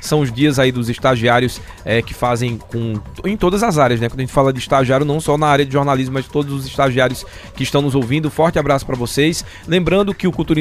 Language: Portuguese